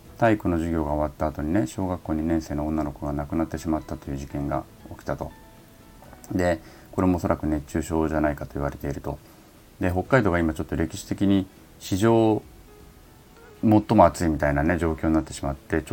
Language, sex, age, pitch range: Japanese, male, 30-49, 75-100 Hz